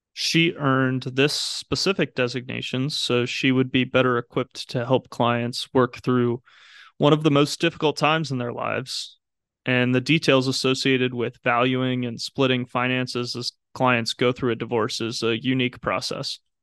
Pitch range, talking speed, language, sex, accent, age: 125-140 Hz, 160 wpm, English, male, American, 20-39